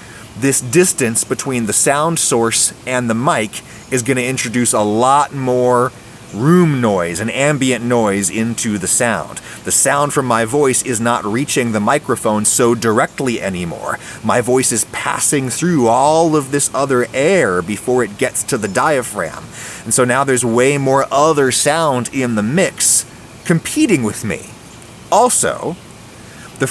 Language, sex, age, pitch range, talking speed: English, male, 30-49, 115-150 Hz, 155 wpm